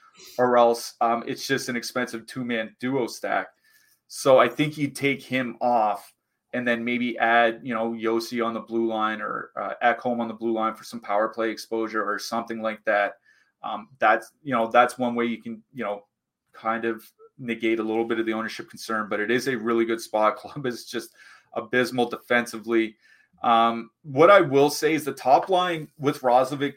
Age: 30-49